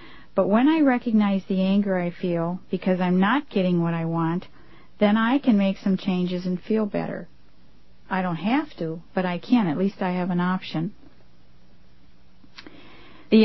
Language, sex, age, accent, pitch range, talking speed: English, female, 50-69, American, 180-215 Hz, 170 wpm